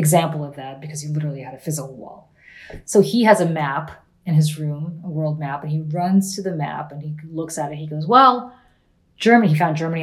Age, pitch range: 30-49, 155-195 Hz